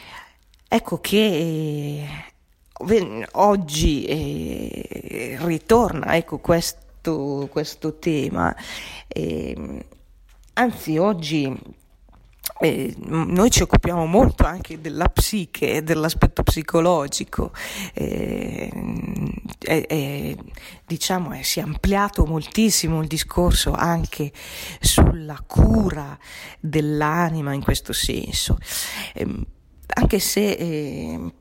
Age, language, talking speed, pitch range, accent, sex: 40-59, Italian, 90 wpm, 150-185 Hz, native, female